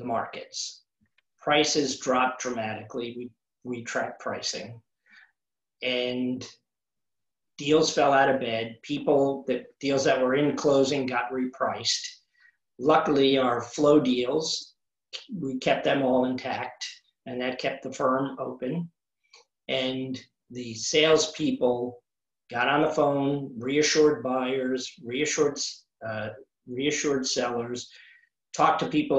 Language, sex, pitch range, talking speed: English, male, 125-145 Hz, 110 wpm